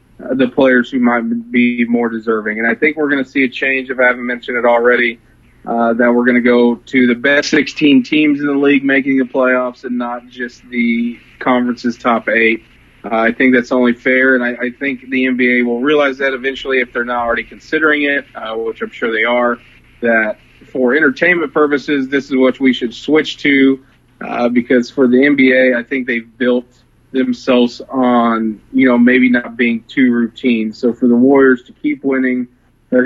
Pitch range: 120-130 Hz